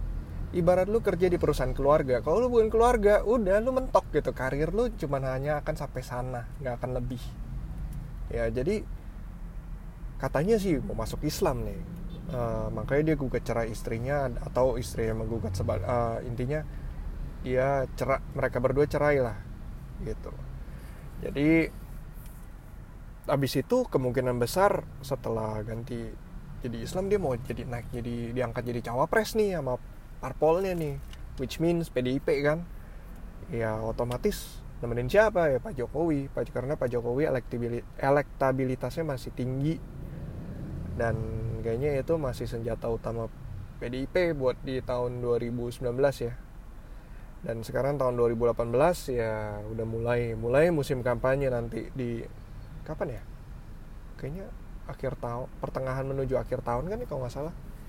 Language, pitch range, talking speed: Indonesian, 115-145 Hz, 135 wpm